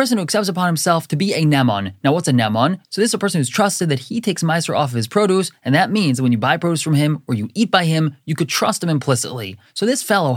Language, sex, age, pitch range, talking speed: English, male, 20-39, 135-185 Hz, 295 wpm